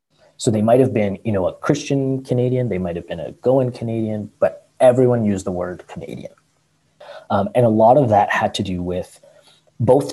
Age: 30-49